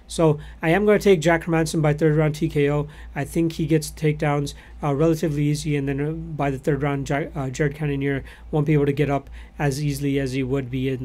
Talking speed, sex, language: 235 wpm, male, English